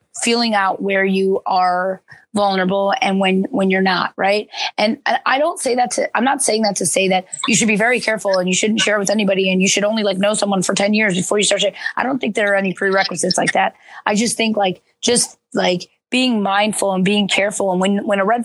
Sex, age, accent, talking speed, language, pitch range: female, 20-39, American, 240 wpm, English, 190-215 Hz